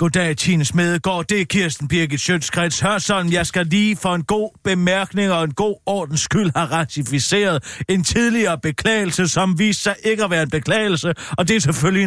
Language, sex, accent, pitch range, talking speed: Danish, male, native, 165-230 Hz, 195 wpm